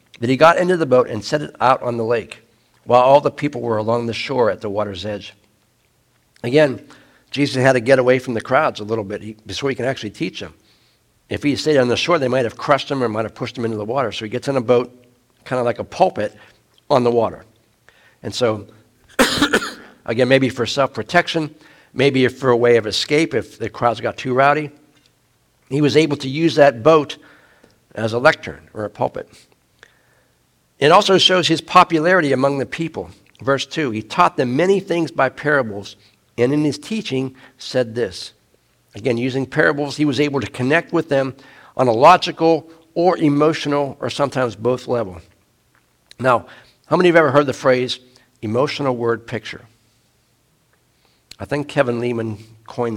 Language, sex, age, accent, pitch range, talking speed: English, male, 60-79, American, 115-145 Hz, 185 wpm